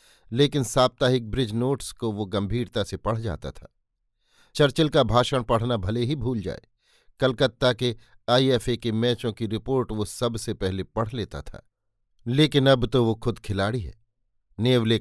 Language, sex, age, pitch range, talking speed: Hindi, male, 50-69, 105-125 Hz, 160 wpm